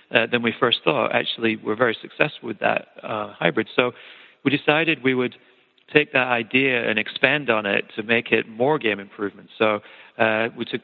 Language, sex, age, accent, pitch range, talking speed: English, male, 40-59, American, 110-125 Hz, 195 wpm